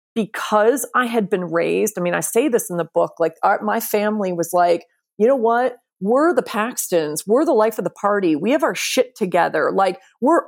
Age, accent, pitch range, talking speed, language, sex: 30-49, American, 175-215 Hz, 220 wpm, English, female